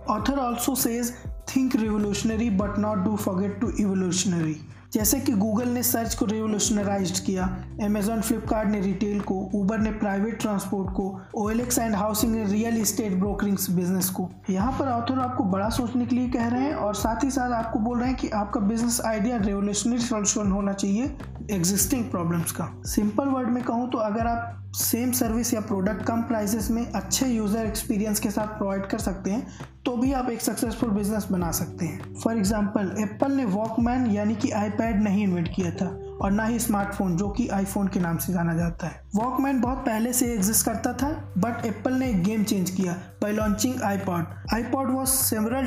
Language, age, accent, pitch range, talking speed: Hindi, 20-39, native, 200-245 Hz, 95 wpm